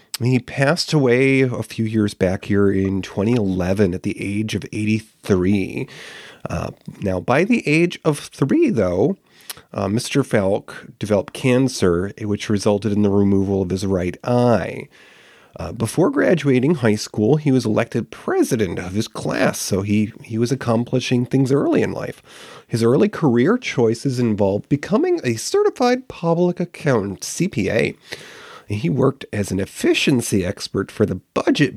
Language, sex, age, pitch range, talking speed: English, male, 30-49, 105-145 Hz, 145 wpm